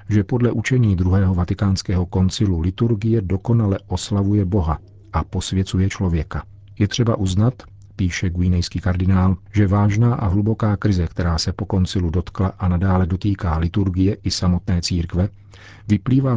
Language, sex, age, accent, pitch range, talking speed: Czech, male, 40-59, native, 95-105 Hz, 135 wpm